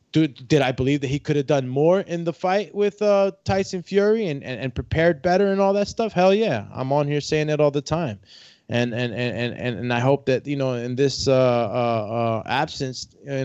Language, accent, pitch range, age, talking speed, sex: English, American, 120-145 Hz, 20-39, 230 wpm, male